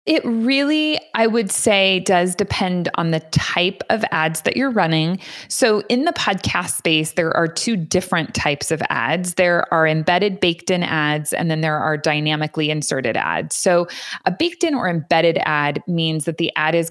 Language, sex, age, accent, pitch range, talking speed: English, female, 20-39, American, 155-185 Hz, 180 wpm